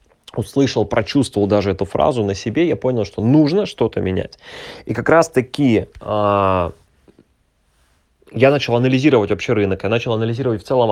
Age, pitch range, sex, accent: 20-39, 110-140 Hz, male, native